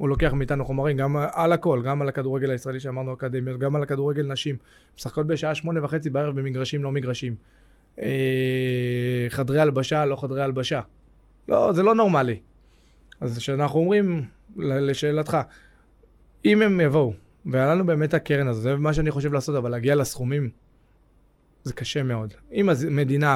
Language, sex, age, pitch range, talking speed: Hebrew, male, 20-39, 130-155 Hz, 150 wpm